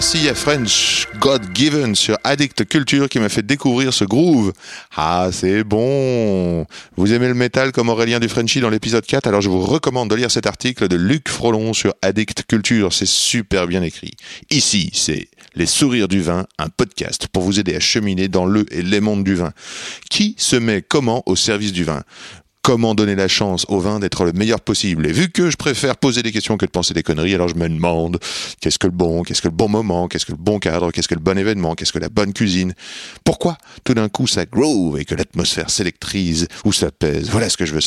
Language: French